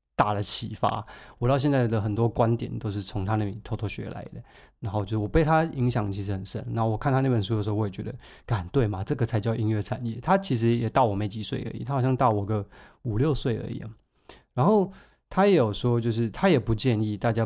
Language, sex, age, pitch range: Chinese, male, 20-39, 105-130 Hz